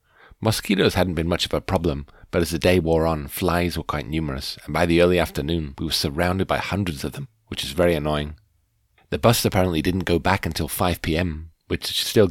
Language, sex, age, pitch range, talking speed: English, male, 40-59, 80-95 Hz, 210 wpm